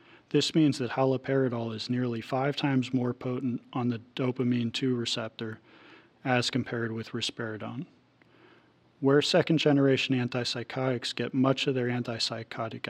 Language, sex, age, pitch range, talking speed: English, male, 40-59, 120-135 Hz, 125 wpm